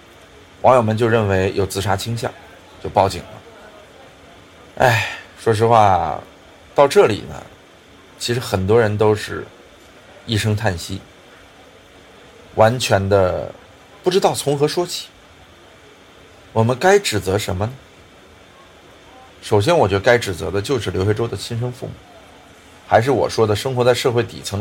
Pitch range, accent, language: 95-130 Hz, native, Chinese